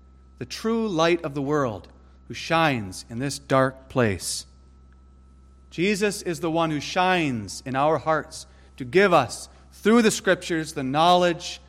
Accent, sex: American, male